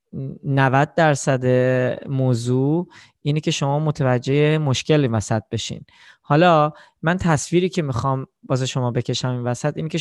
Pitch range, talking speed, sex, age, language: 135-165 Hz, 130 wpm, male, 20-39, Persian